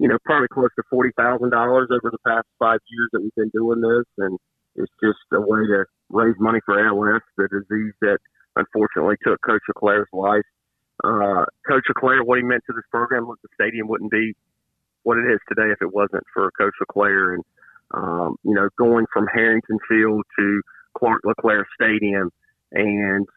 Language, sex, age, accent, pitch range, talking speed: English, male, 40-59, American, 105-115 Hz, 180 wpm